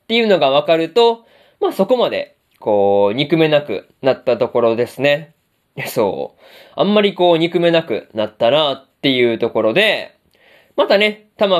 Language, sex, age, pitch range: Japanese, male, 20-39, 145-200 Hz